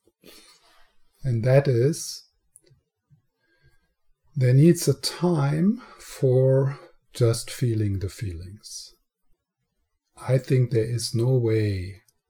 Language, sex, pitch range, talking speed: English, male, 105-130 Hz, 90 wpm